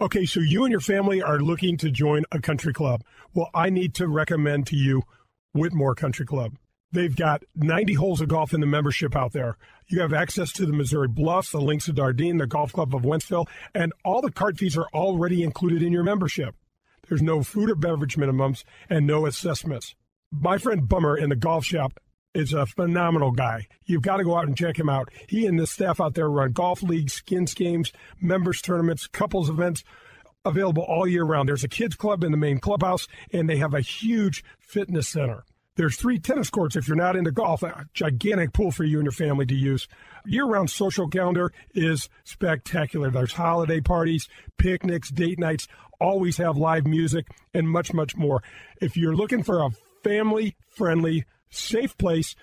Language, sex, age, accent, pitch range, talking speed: English, male, 40-59, American, 145-180 Hz, 195 wpm